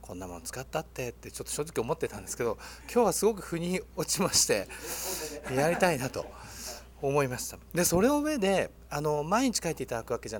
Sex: male